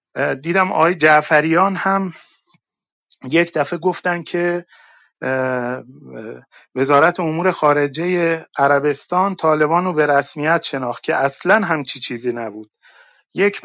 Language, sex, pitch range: Persian, male, 145-185 Hz